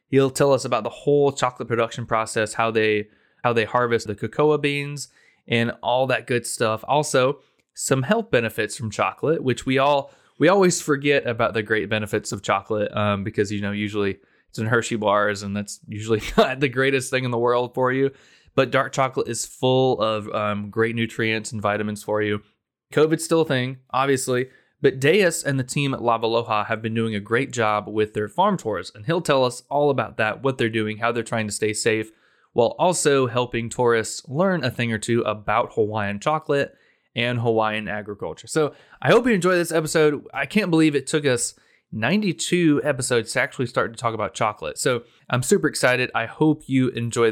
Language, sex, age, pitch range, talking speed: English, male, 20-39, 110-140 Hz, 200 wpm